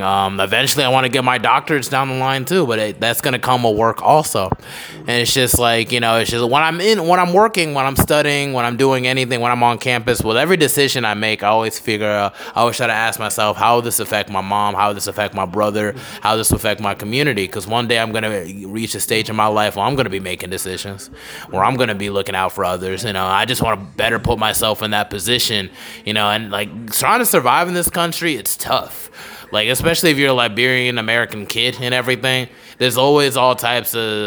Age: 20-39